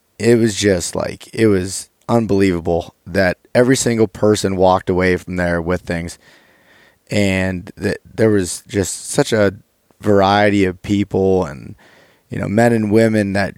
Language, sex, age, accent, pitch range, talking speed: English, male, 20-39, American, 90-110 Hz, 145 wpm